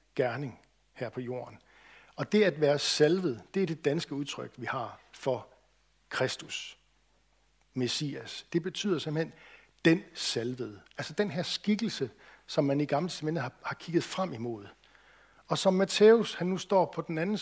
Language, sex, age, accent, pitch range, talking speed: Danish, male, 60-79, native, 130-180 Hz, 160 wpm